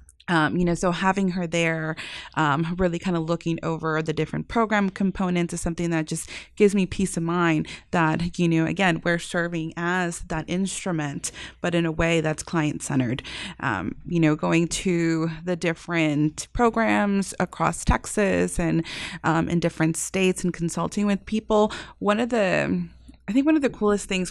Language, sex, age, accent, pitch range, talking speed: English, female, 20-39, American, 165-195 Hz, 170 wpm